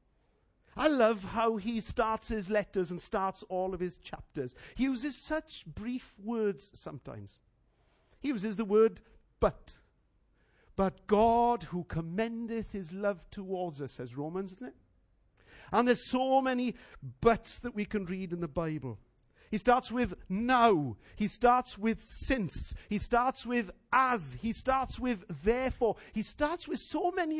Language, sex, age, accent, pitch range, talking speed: English, male, 50-69, British, 140-230 Hz, 150 wpm